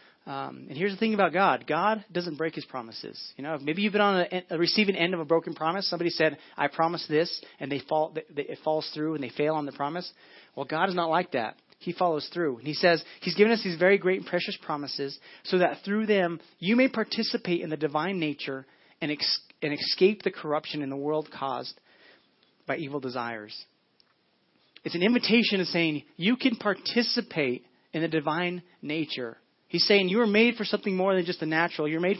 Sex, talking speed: male, 215 wpm